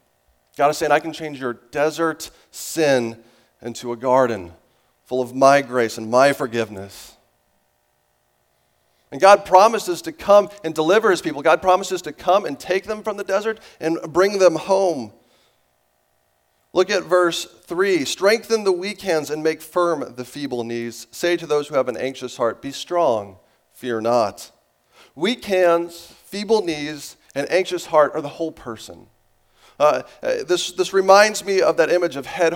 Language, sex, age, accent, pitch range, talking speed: English, male, 40-59, American, 120-170 Hz, 165 wpm